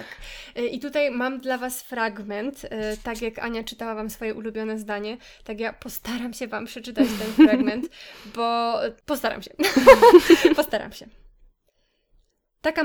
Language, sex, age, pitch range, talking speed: Polish, female, 20-39, 215-255 Hz, 130 wpm